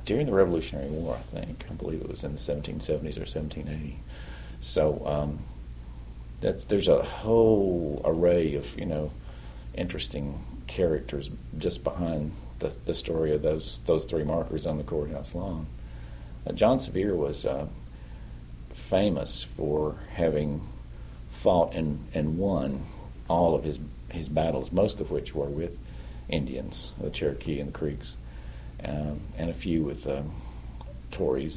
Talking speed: 145 wpm